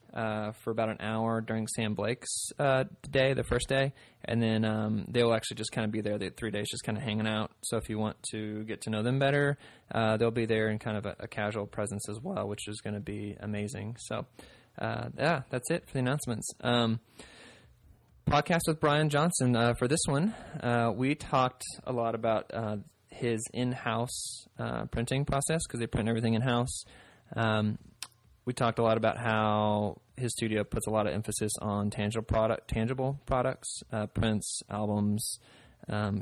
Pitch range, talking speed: 105-120 Hz, 195 wpm